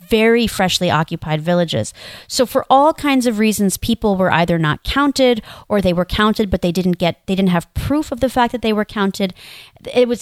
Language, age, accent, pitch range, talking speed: English, 30-49, American, 175-220 Hz, 210 wpm